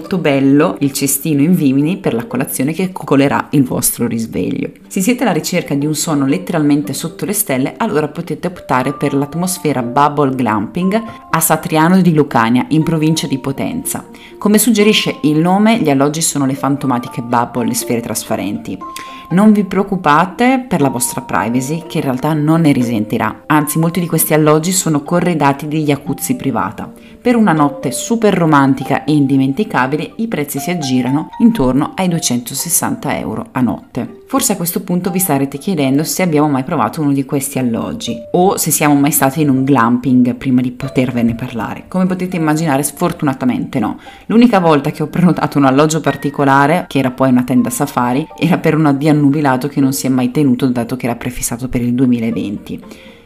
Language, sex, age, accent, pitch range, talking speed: Italian, female, 30-49, native, 135-175 Hz, 175 wpm